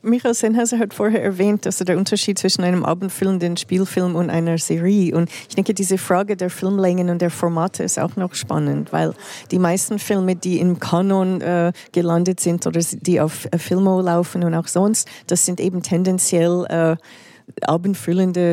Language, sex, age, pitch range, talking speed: German, female, 40-59, 170-190 Hz, 175 wpm